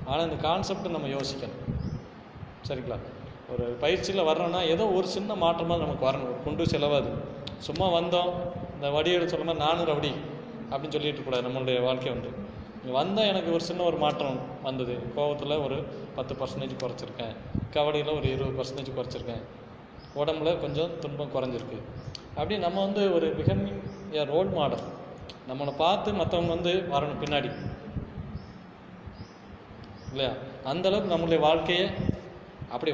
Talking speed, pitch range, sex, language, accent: 120 wpm, 130-170 Hz, male, Tamil, native